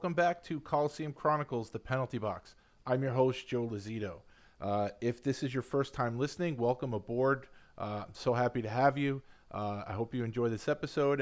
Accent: American